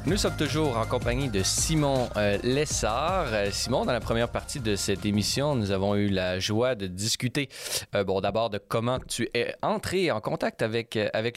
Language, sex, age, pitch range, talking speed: French, male, 30-49, 100-125 Hz, 185 wpm